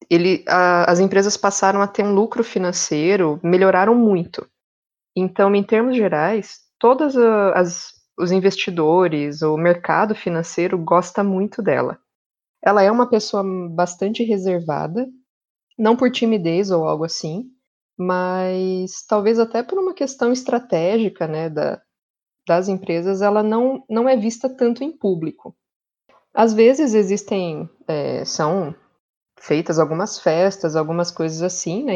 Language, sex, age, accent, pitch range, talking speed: Portuguese, female, 20-39, Brazilian, 175-225 Hz, 130 wpm